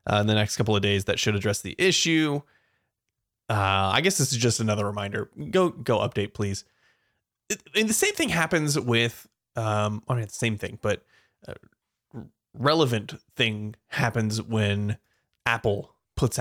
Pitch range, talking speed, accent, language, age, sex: 110-165 Hz, 165 wpm, American, English, 20-39, male